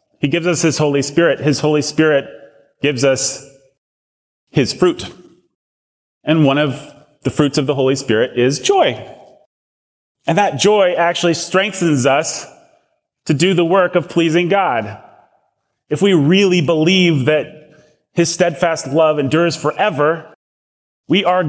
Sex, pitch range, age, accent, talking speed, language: male, 110-160 Hz, 30-49, American, 135 wpm, English